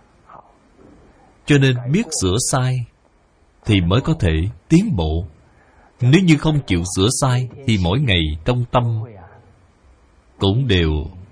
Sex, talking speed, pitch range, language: male, 125 wpm, 85-125 Hz, Vietnamese